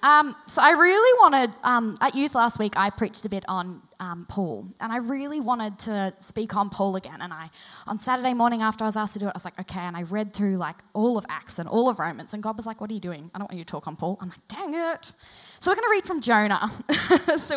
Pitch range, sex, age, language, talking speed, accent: 185-235 Hz, female, 10-29, English, 280 wpm, Australian